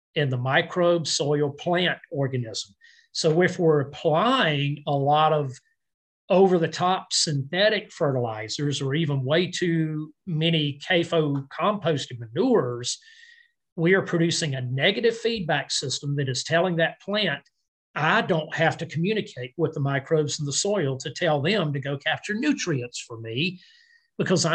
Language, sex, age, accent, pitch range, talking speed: English, male, 50-69, American, 145-185 Hz, 145 wpm